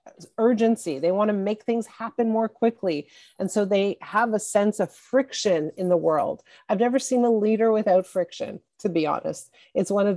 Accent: American